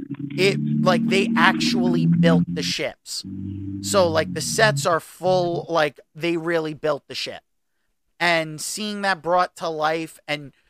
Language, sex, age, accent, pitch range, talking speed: English, male, 30-49, American, 150-185 Hz, 145 wpm